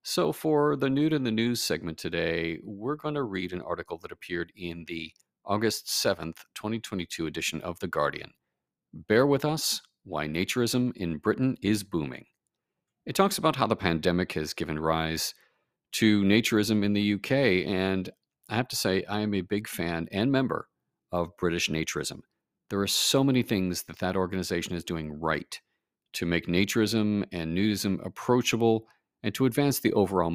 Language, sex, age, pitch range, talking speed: English, male, 50-69, 85-120 Hz, 170 wpm